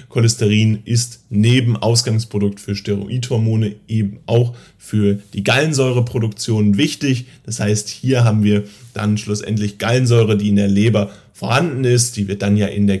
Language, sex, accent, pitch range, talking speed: German, male, German, 100-115 Hz, 150 wpm